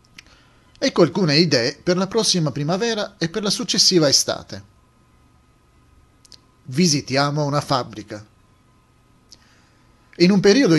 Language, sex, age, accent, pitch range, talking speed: Italian, male, 40-59, native, 135-180 Hz, 100 wpm